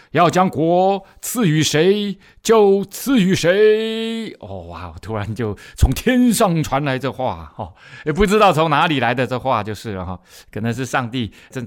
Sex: male